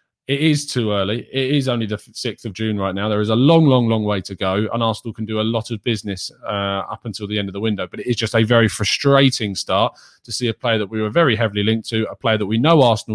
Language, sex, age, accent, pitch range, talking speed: English, male, 20-39, British, 105-130 Hz, 285 wpm